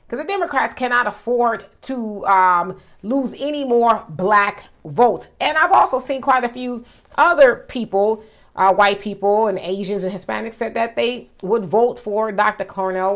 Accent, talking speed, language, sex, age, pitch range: American, 165 wpm, English, female, 30-49, 205-270 Hz